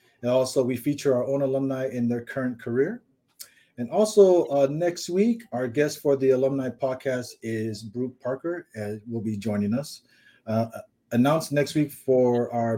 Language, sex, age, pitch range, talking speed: English, male, 30-49, 115-145 Hz, 170 wpm